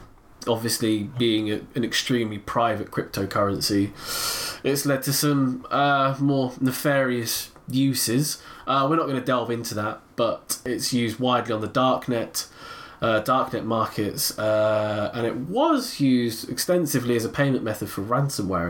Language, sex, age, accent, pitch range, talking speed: English, male, 20-39, British, 105-140 Hz, 145 wpm